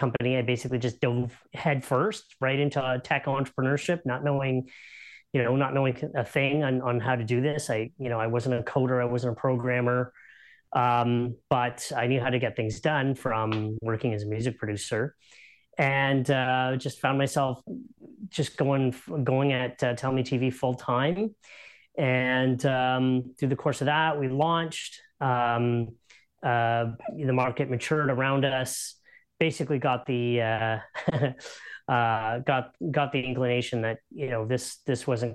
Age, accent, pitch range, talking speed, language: 30-49, American, 115-135 Hz, 165 wpm, English